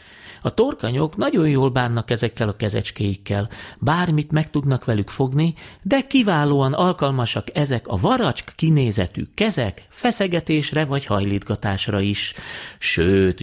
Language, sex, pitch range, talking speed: Hungarian, male, 95-145 Hz, 115 wpm